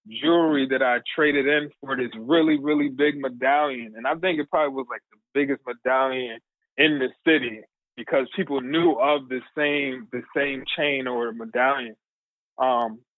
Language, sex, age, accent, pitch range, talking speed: English, male, 20-39, American, 125-145 Hz, 165 wpm